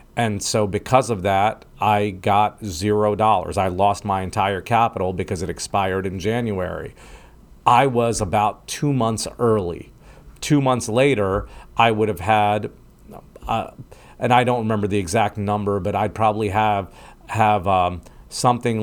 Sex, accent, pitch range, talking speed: male, American, 100-115 Hz, 150 wpm